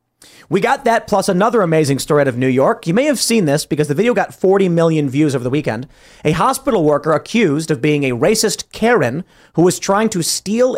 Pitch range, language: 145-195 Hz, English